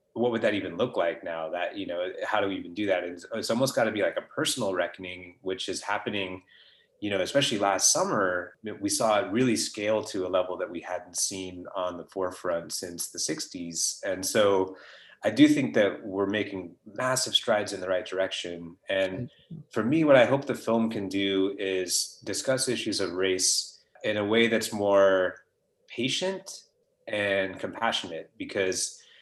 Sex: male